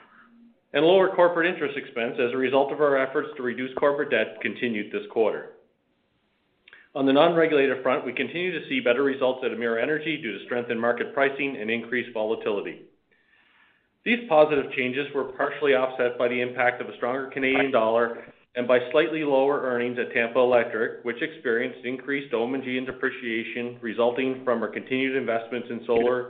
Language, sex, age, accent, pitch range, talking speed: English, male, 40-59, American, 115-140 Hz, 170 wpm